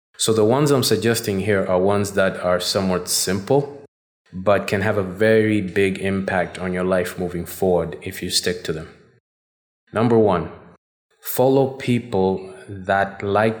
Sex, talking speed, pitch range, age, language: male, 155 wpm, 90-110 Hz, 20-39, English